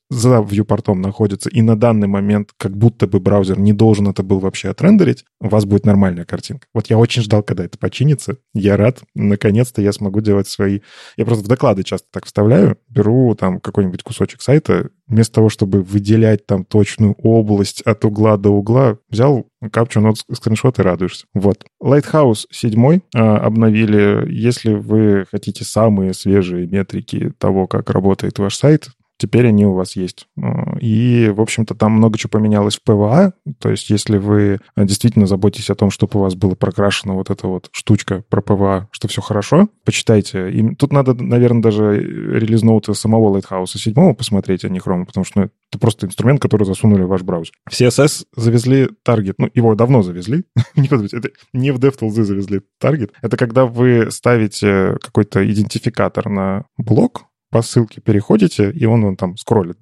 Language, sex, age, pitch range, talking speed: Russian, male, 20-39, 100-120 Hz, 170 wpm